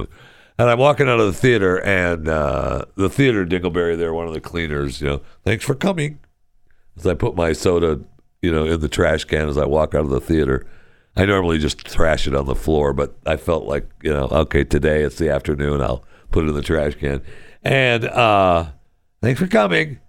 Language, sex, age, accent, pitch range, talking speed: English, male, 60-79, American, 70-95 Hz, 210 wpm